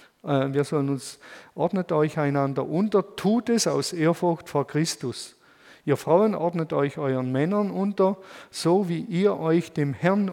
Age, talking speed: 50-69, 150 wpm